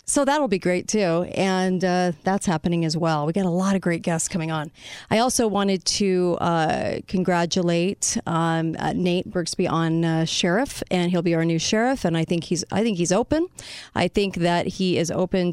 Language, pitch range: English, 165-195 Hz